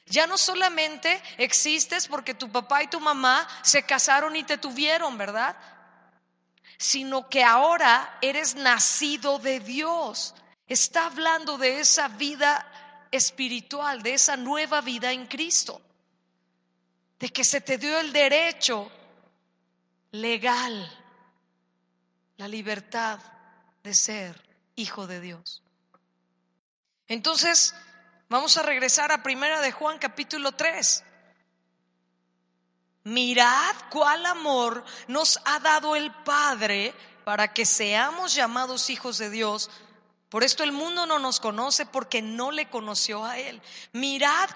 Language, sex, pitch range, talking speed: Spanish, female, 210-305 Hz, 120 wpm